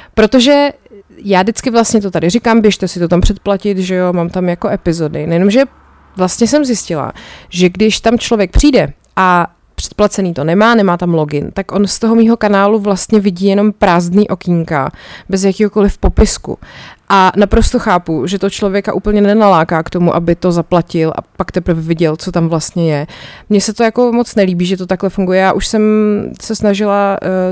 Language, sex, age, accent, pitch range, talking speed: Czech, female, 30-49, native, 180-210 Hz, 185 wpm